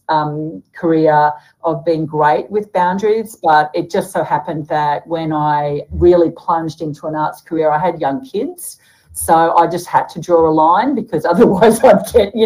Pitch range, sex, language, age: 155-180 Hz, female, English, 50-69